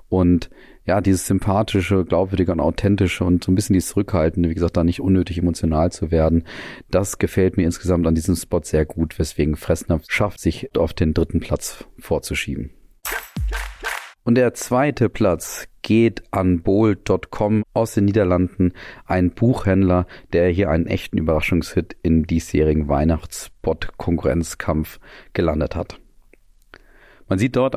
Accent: German